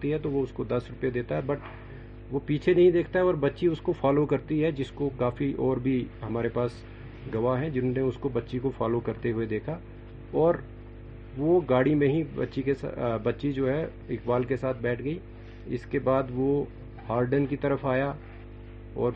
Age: 50-69